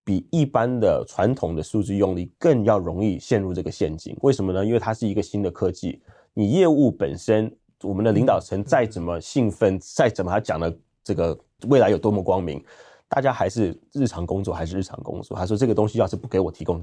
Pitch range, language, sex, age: 95-120 Hz, Chinese, male, 30-49